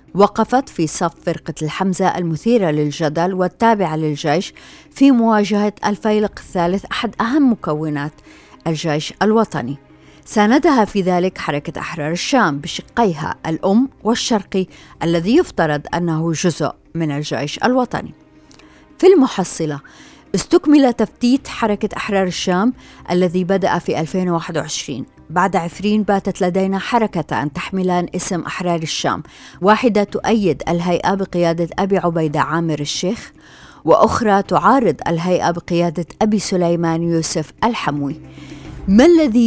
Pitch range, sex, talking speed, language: 165-210 Hz, female, 110 wpm, Arabic